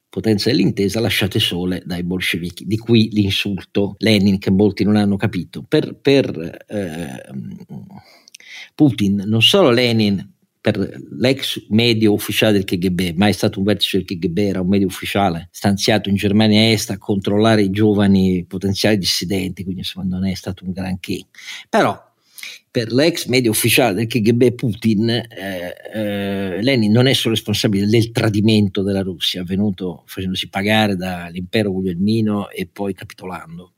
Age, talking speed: 50-69, 145 wpm